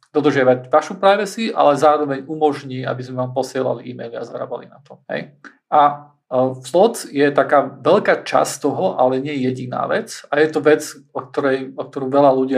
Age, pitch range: 40-59, 130-150 Hz